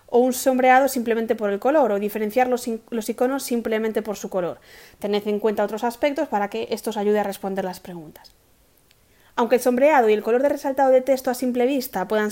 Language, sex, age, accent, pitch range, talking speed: Spanish, female, 20-39, Spanish, 215-275 Hz, 215 wpm